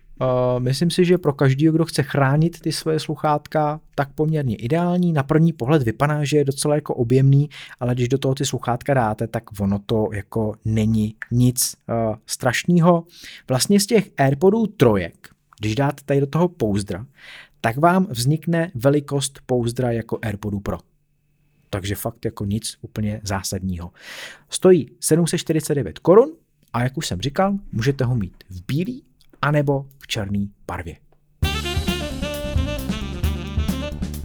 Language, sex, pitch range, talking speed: Czech, male, 110-150 Hz, 140 wpm